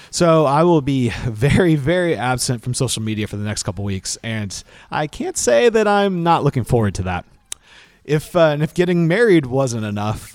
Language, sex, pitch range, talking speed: English, male, 110-150 Hz, 195 wpm